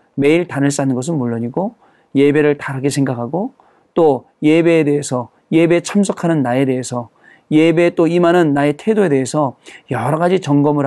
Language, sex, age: Korean, male, 40-59